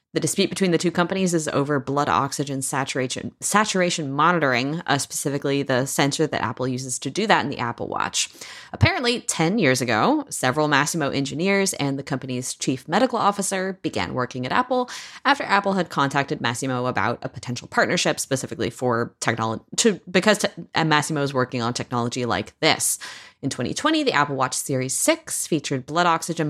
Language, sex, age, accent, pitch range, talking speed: English, female, 20-39, American, 130-190 Hz, 170 wpm